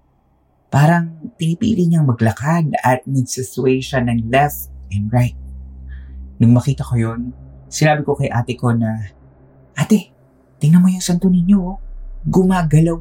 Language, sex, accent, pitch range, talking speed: Filipino, male, native, 95-130 Hz, 135 wpm